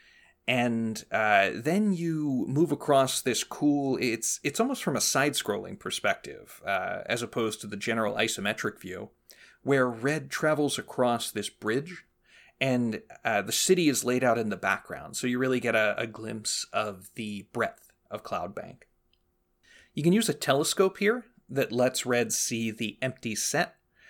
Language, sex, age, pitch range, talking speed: English, male, 30-49, 115-155 Hz, 160 wpm